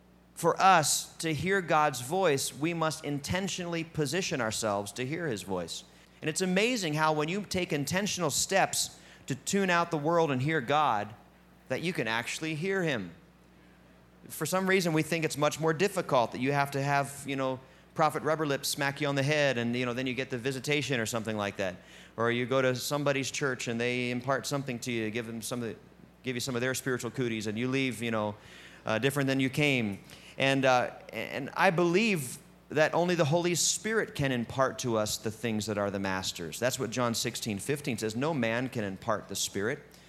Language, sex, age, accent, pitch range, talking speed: English, male, 30-49, American, 110-155 Hz, 210 wpm